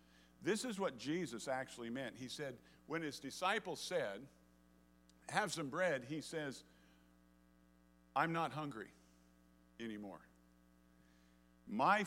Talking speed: 110 wpm